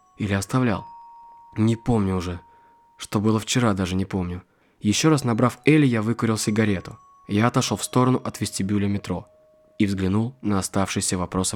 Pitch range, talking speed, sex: 105-130 Hz, 155 wpm, male